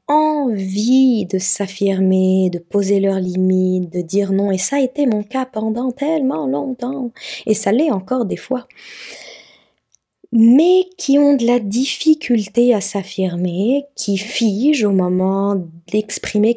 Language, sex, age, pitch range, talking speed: French, female, 20-39, 195-255 Hz, 140 wpm